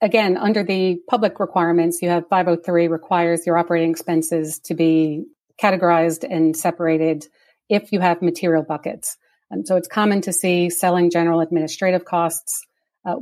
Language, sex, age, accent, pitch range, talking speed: English, female, 40-59, American, 165-185 Hz, 150 wpm